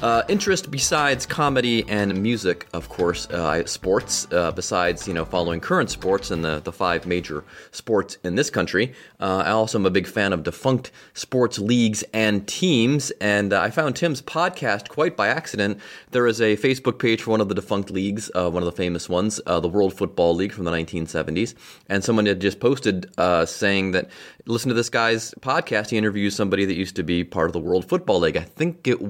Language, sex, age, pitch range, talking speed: English, male, 30-49, 95-125 Hz, 210 wpm